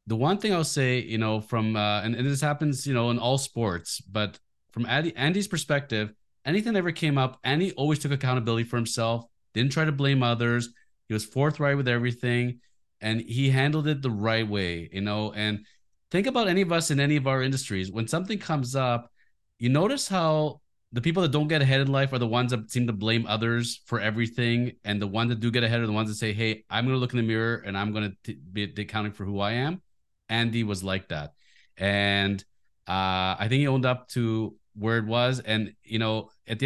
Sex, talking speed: male, 225 wpm